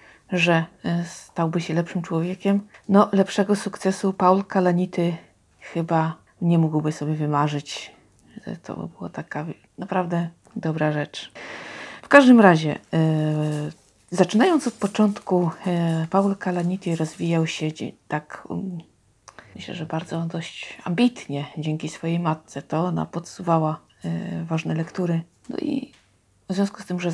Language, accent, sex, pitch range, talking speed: Polish, native, female, 160-190 Hz, 115 wpm